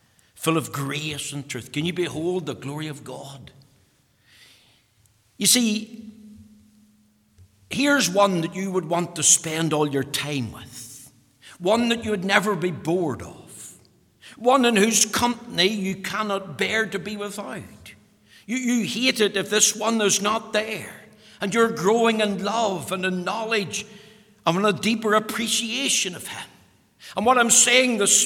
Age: 60-79